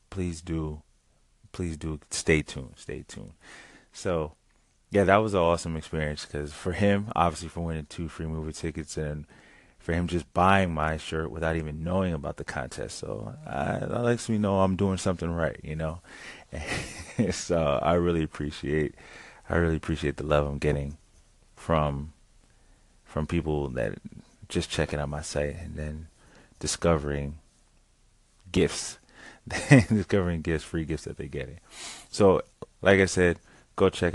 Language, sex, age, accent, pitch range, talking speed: English, male, 30-49, American, 75-90 Hz, 155 wpm